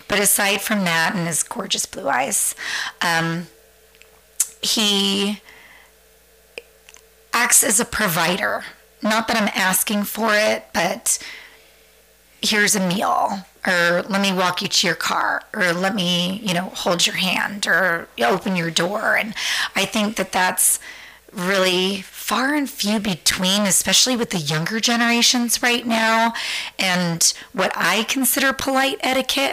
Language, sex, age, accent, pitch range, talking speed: English, female, 30-49, American, 185-215 Hz, 140 wpm